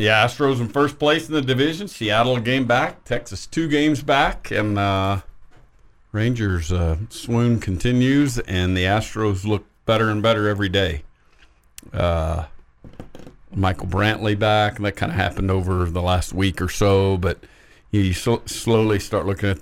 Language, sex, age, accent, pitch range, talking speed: English, male, 50-69, American, 90-115 Hz, 160 wpm